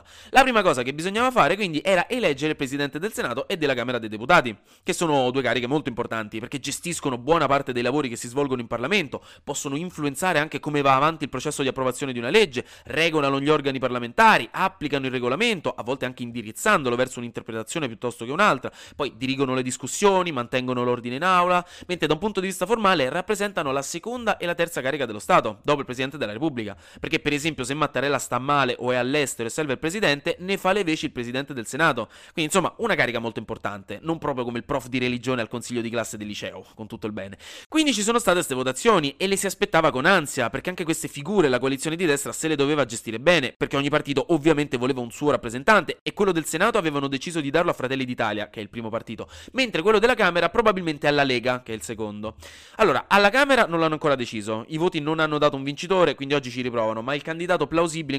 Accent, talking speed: native, 225 wpm